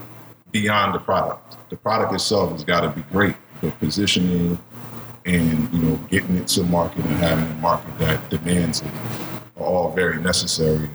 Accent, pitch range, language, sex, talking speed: American, 75-90 Hz, English, male, 170 wpm